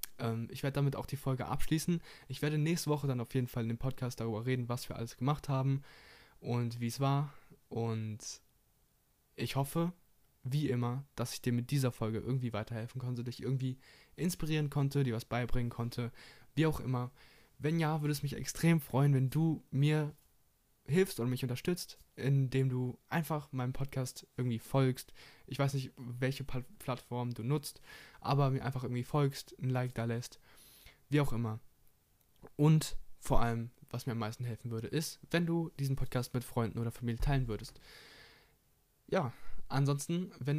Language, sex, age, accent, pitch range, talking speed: German, male, 20-39, German, 120-140 Hz, 175 wpm